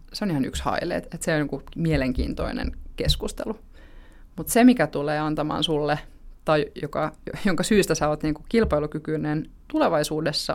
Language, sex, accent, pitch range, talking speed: Finnish, female, native, 145-175 Hz, 140 wpm